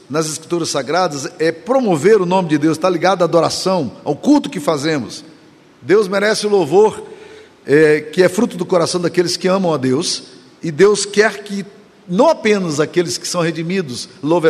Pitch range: 160-200 Hz